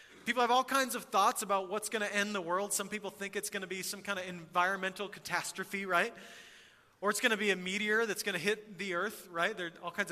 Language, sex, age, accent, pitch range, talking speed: English, male, 30-49, American, 185-225 Hz, 260 wpm